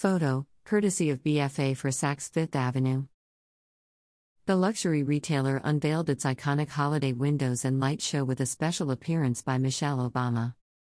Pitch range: 130-150 Hz